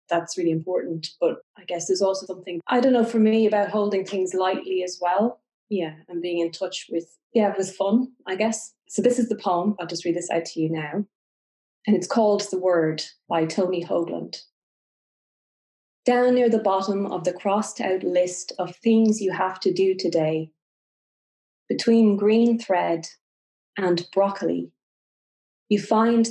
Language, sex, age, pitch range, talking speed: English, female, 30-49, 175-215 Hz, 175 wpm